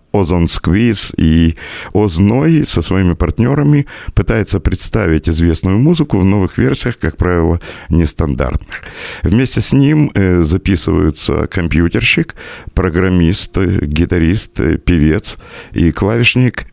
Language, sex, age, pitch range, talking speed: Russian, male, 50-69, 80-105 Hz, 95 wpm